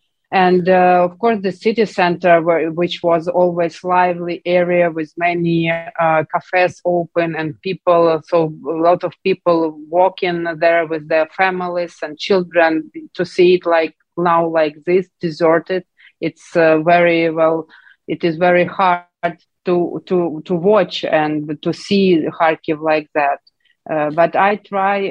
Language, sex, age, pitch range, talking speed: English, female, 30-49, 160-180 Hz, 145 wpm